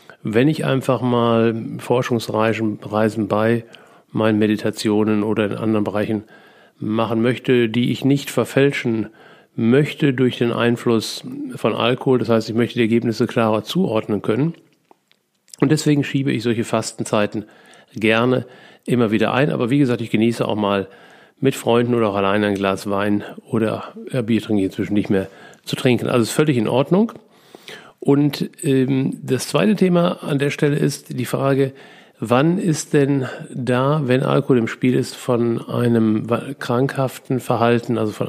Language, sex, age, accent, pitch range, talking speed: German, male, 50-69, German, 110-135 Hz, 160 wpm